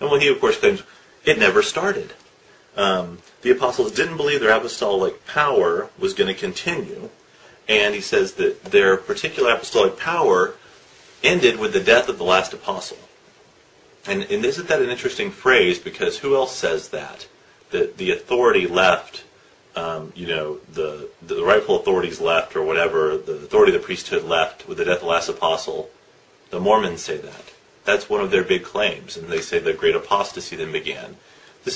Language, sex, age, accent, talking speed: English, male, 30-49, American, 180 wpm